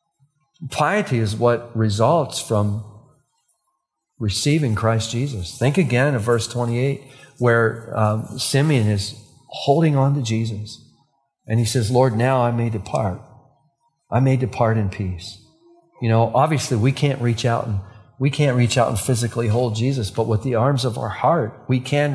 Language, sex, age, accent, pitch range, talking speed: English, male, 40-59, American, 105-130 Hz, 160 wpm